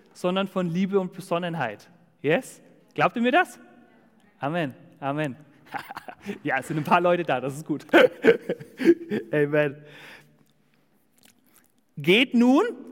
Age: 30-49